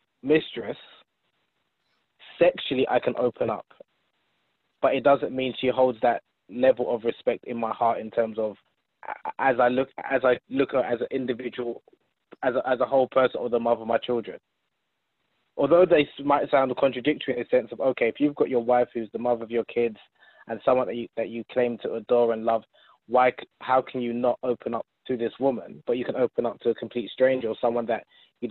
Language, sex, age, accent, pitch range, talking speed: English, male, 20-39, British, 115-130 Hz, 205 wpm